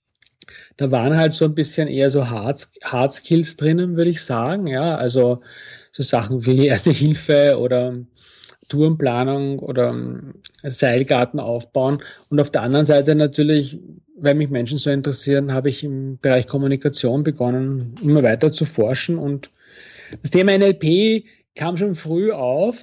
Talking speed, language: 140 wpm, German